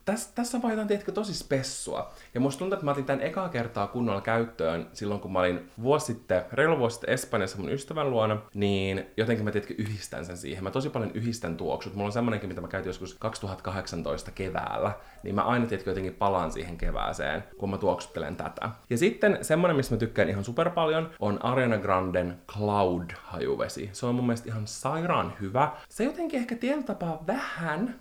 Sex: male